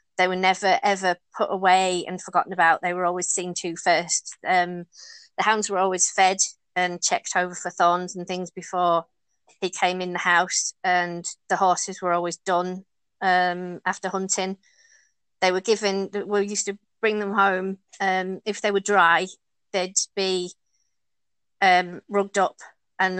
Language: English